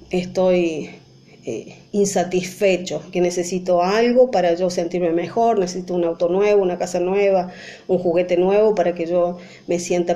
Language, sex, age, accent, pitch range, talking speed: Spanish, female, 30-49, American, 180-230 Hz, 150 wpm